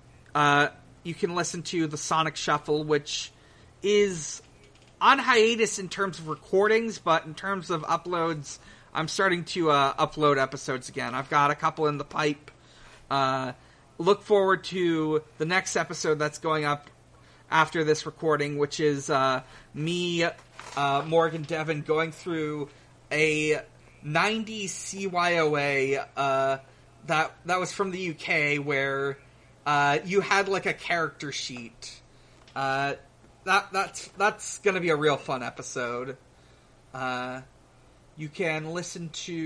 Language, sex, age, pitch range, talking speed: English, male, 30-49, 135-170 Hz, 135 wpm